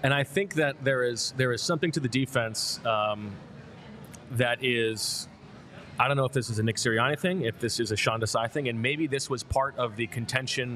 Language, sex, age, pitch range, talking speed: English, male, 30-49, 115-145 Hz, 225 wpm